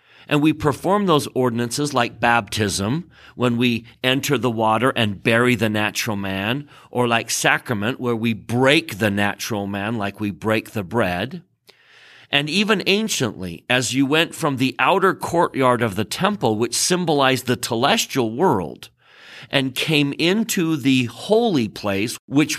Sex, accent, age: male, American, 40-59